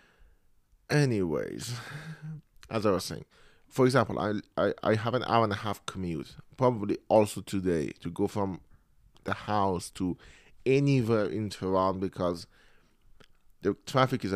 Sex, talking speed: male, 140 wpm